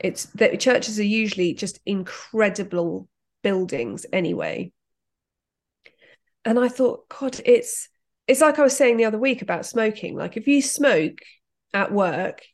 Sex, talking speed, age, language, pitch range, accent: female, 145 wpm, 30-49, English, 185-245 Hz, British